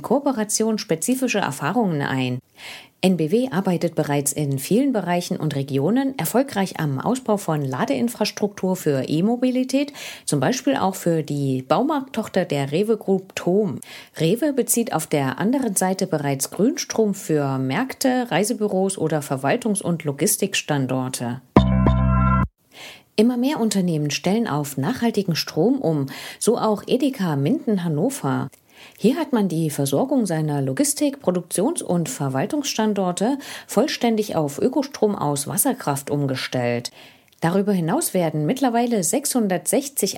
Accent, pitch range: German, 155-235 Hz